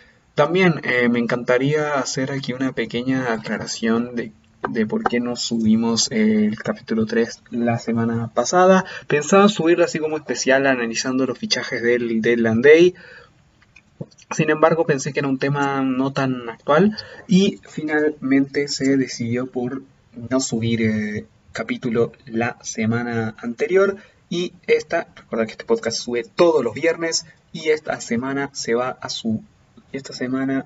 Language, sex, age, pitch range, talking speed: Spanish, male, 20-39, 120-155 Hz, 145 wpm